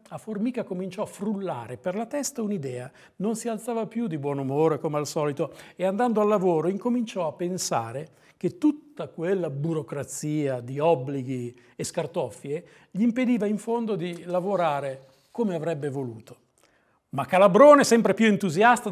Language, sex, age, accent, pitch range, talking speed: Italian, male, 50-69, native, 160-220 Hz, 150 wpm